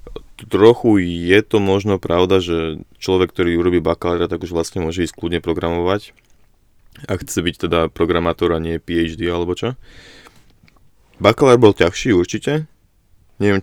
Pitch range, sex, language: 85-95 Hz, male, Slovak